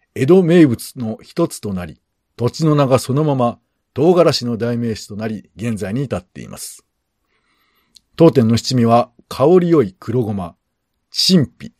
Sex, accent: male, native